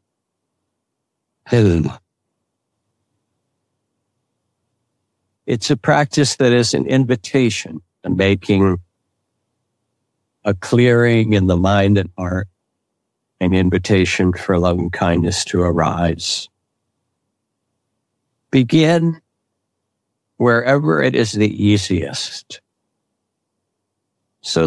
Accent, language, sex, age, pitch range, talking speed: American, English, male, 60-79, 95-120 Hz, 75 wpm